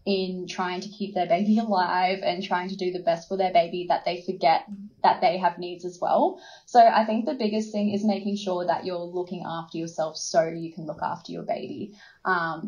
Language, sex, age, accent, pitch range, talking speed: English, female, 20-39, Australian, 175-205 Hz, 225 wpm